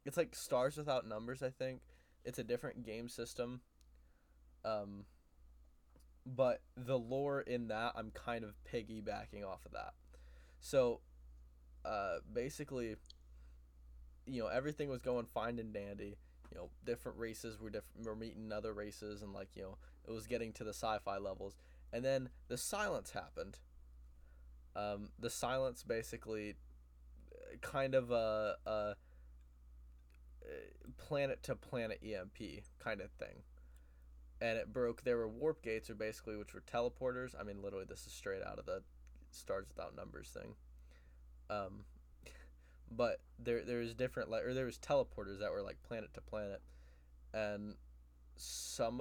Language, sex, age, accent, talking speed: English, male, 10-29, American, 145 wpm